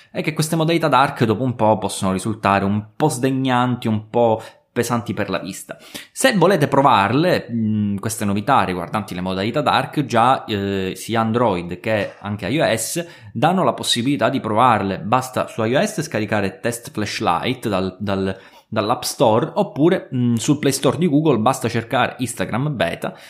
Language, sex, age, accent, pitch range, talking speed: Italian, male, 20-39, native, 105-140 Hz, 150 wpm